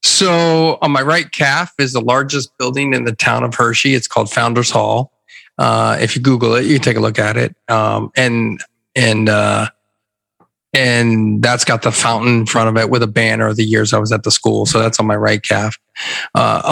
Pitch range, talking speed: 115-130 Hz, 215 wpm